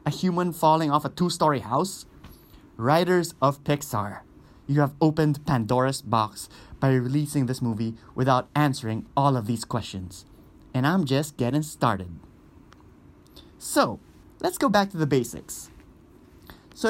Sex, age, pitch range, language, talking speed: male, 20-39, 125-165 Hz, English, 135 wpm